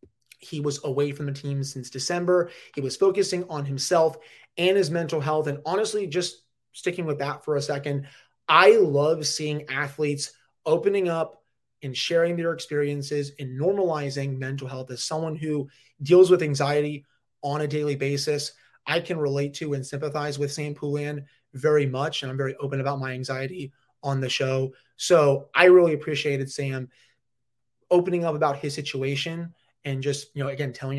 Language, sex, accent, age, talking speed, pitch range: English, male, American, 30-49, 170 wpm, 140-175 Hz